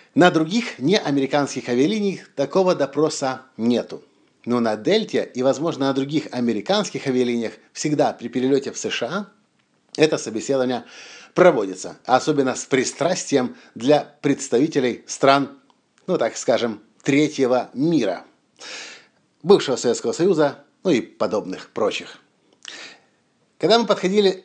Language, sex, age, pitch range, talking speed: Russian, male, 50-69, 135-190 Hz, 110 wpm